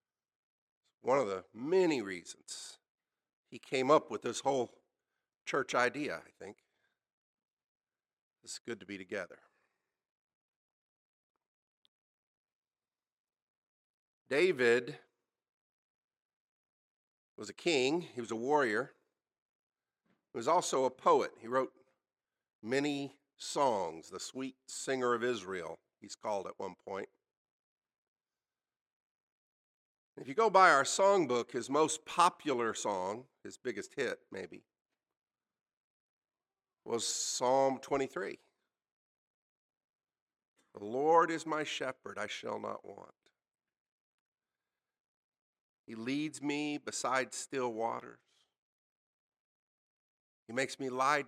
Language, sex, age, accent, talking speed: English, male, 50-69, American, 95 wpm